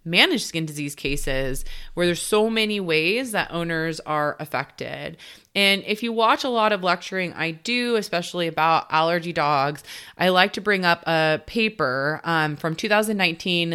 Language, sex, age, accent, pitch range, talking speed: English, female, 30-49, American, 155-195 Hz, 160 wpm